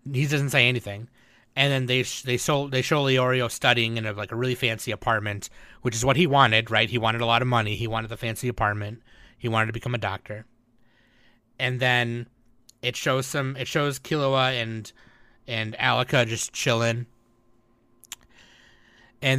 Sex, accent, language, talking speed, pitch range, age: male, American, English, 185 wpm, 115-125 Hz, 30-49